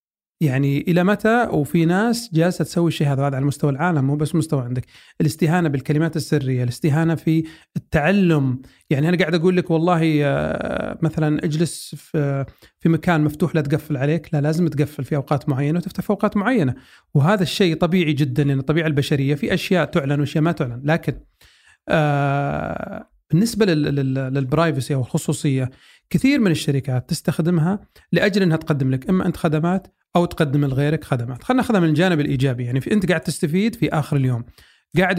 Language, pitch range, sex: Arabic, 145-180 Hz, male